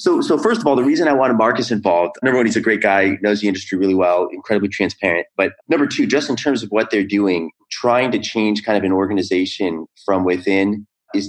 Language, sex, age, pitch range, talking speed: English, male, 30-49, 95-110 Hz, 235 wpm